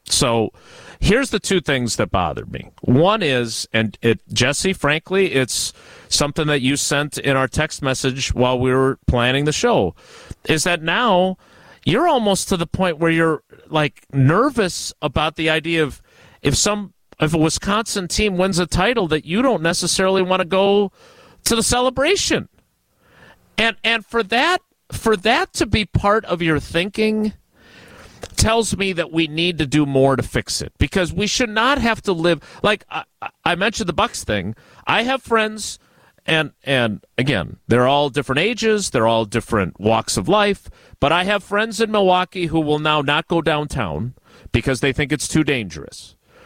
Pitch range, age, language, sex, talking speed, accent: 145-210 Hz, 40-59, English, male, 175 wpm, American